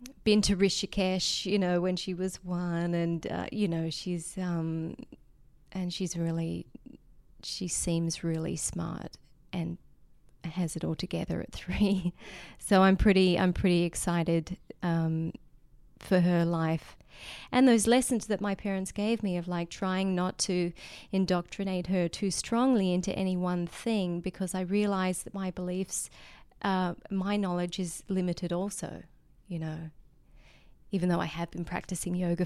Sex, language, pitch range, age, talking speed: female, English, 170-190 Hz, 30-49, 150 wpm